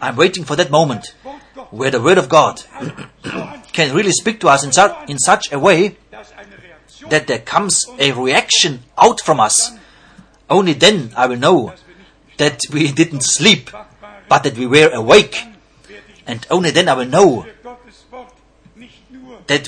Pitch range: 135-190 Hz